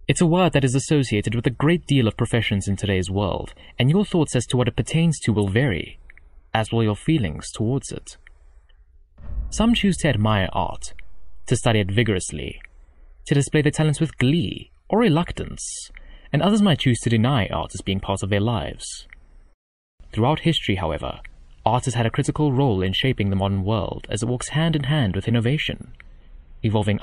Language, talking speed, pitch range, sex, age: English, 190 wpm, 80-125 Hz, male, 20-39